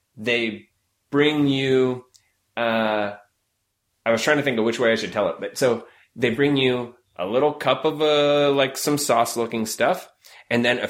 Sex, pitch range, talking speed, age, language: male, 105-135 Hz, 185 wpm, 20-39, English